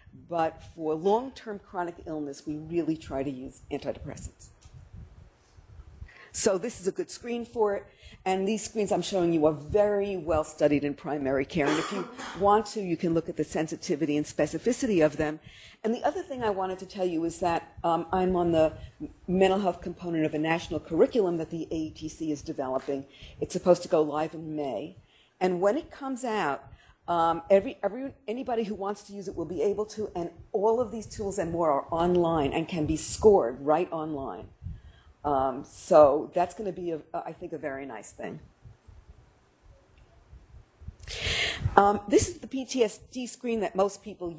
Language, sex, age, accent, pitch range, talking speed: English, female, 50-69, American, 155-205 Hz, 180 wpm